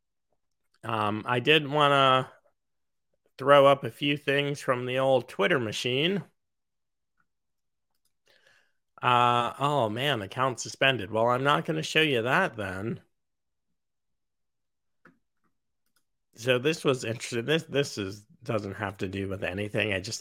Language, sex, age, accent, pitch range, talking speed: English, male, 30-49, American, 105-135 Hz, 130 wpm